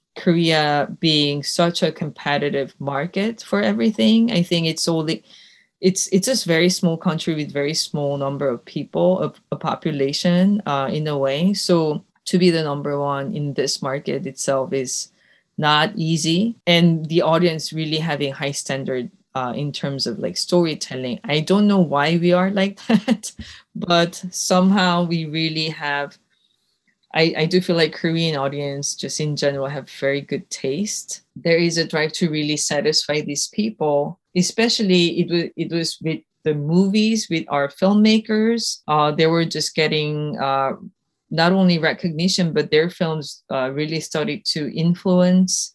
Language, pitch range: English, 145-185 Hz